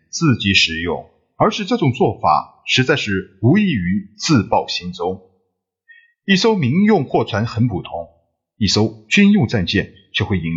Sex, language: male, Chinese